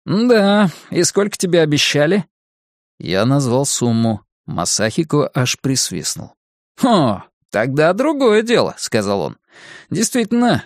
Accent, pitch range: native, 130-190 Hz